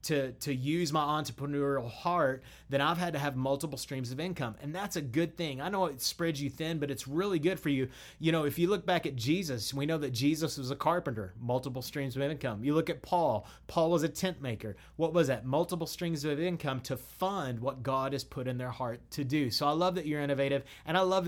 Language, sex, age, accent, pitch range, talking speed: English, male, 30-49, American, 135-165 Hz, 245 wpm